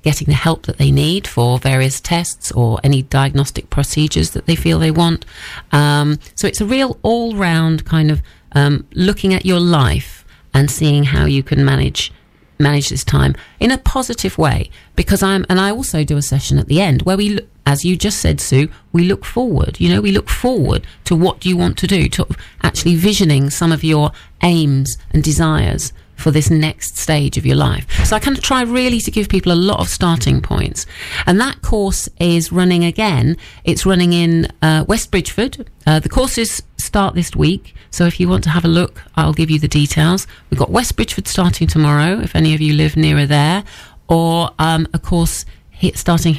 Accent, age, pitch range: British, 40-59, 140-185 Hz